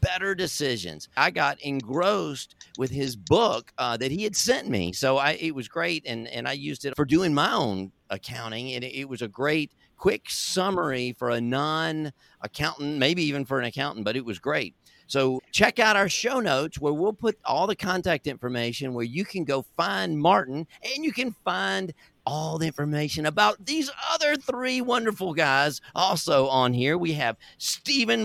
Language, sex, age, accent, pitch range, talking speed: English, male, 50-69, American, 135-200 Hz, 180 wpm